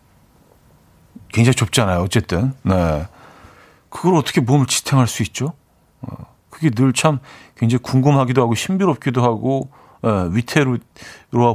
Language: Korean